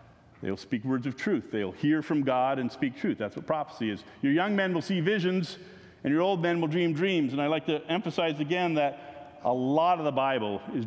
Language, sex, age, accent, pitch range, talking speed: English, male, 40-59, American, 110-150 Hz, 230 wpm